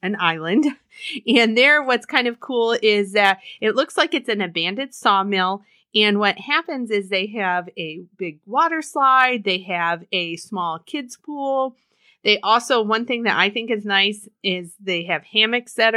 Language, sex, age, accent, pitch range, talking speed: English, female, 30-49, American, 190-240 Hz, 175 wpm